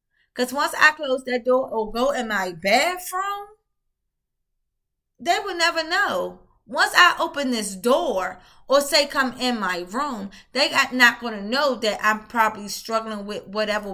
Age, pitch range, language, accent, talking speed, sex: 20-39, 215-295 Hz, English, American, 160 wpm, female